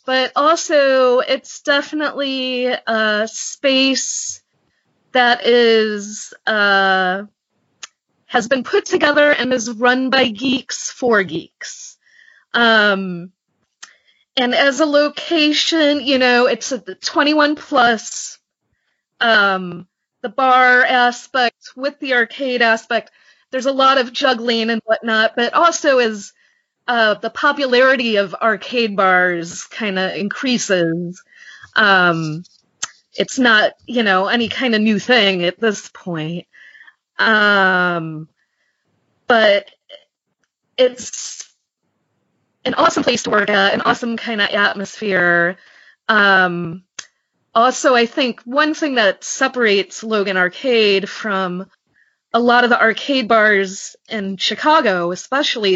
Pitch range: 200-265 Hz